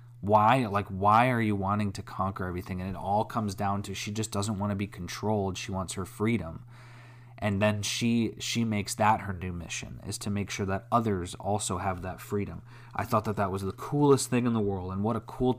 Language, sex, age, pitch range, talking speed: English, male, 20-39, 100-120 Hz, 230 wpm